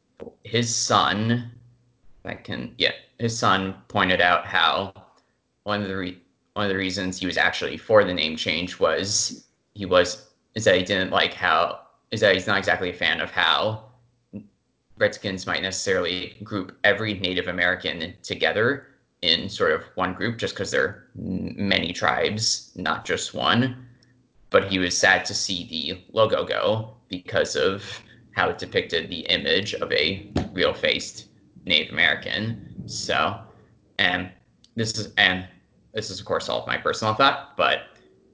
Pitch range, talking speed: 95-115 Hz, 160 wpm